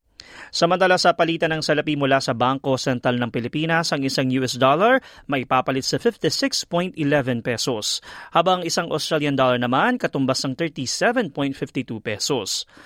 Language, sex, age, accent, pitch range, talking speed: Filipino, male, 30-49, native, 130-180 Hz, 135 wpm